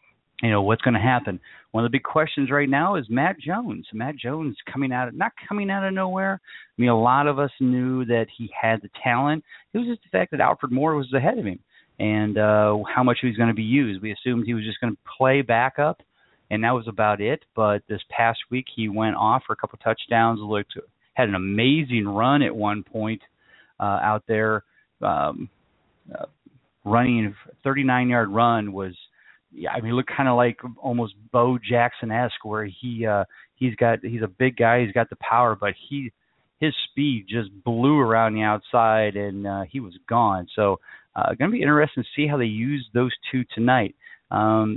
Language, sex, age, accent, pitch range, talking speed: English, male, 30-49, American, 110-130 Hz, 210 wpm